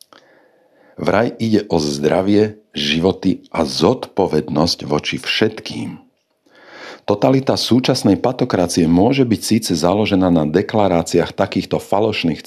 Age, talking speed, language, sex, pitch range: 50-69, 95 wpm, Slovak, male, 90-125 Hz